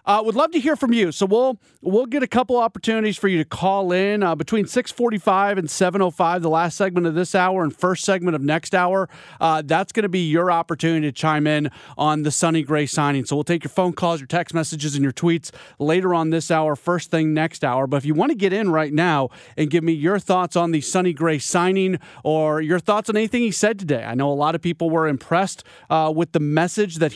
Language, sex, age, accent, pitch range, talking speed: English, male, 30-49, American, 155-190 Hz, 255 wpm